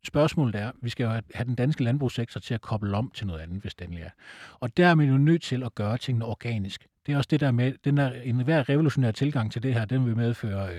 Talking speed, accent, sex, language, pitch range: 260 wpm, native, male, Danish, 105-140 Hz